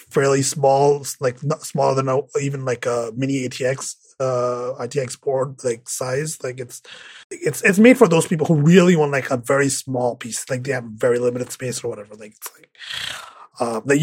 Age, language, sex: 30-49, English, male